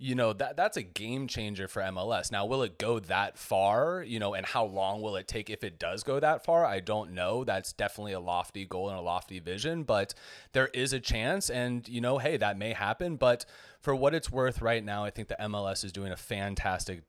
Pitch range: 100-130 Hz